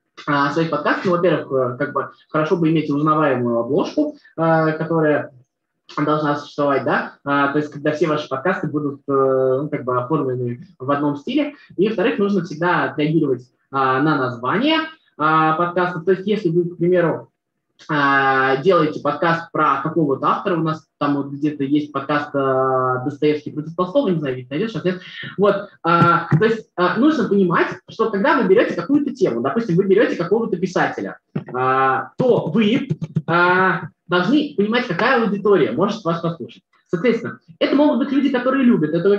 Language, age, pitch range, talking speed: Russian, 20-39, 150-205 Hz, 140 wpm